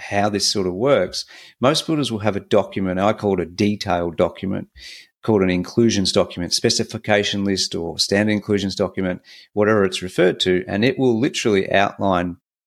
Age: 40-59